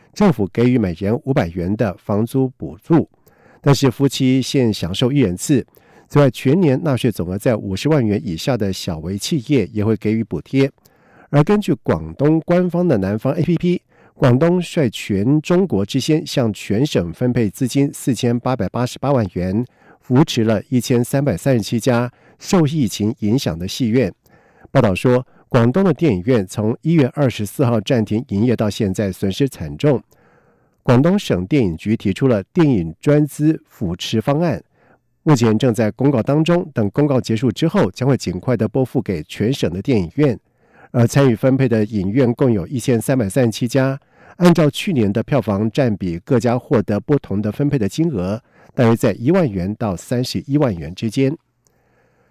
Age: 50-69